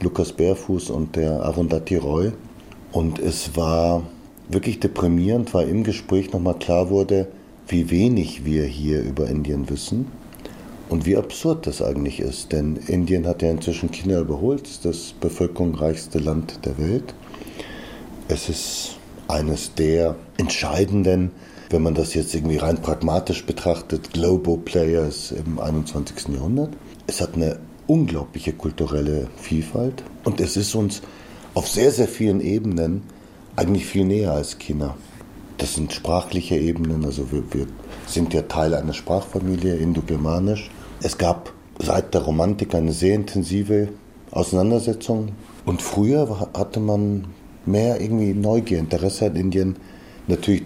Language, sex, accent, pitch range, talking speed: German, male, German, 80-100 Hz, 135 wpm